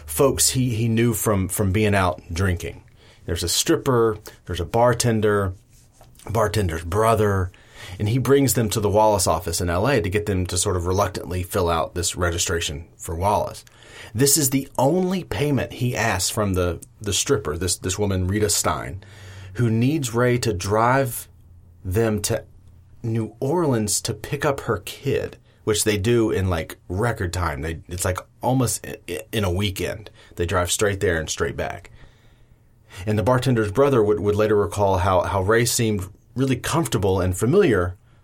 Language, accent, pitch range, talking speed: English, American, 90-115 Hz, 170 wpm